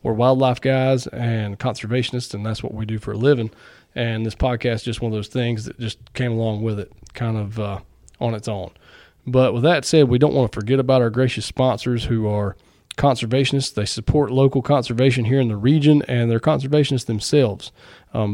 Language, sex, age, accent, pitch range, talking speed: English, male, 20-39, American, 115-135 Hz, 205 wpm